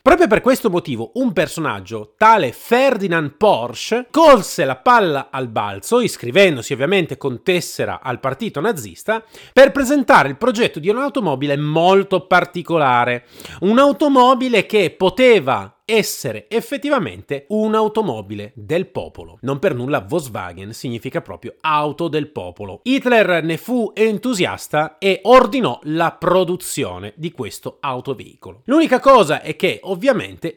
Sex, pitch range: male, 140-235 Hz